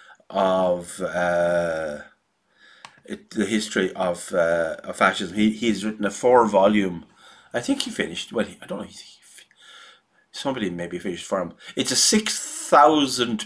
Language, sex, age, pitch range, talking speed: English, male, 30-49, 100-140 Hz, 145 wpm